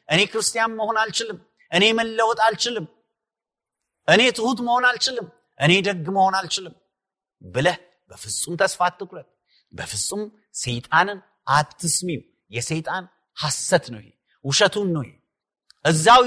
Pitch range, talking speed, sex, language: 145-220 Hz, 105 wpm, male, Amharic